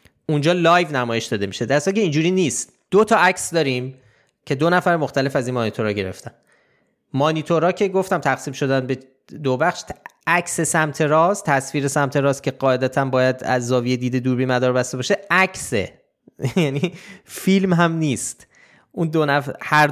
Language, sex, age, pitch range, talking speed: Persian, male, 20-39, 125-175 Hz, 155 wpm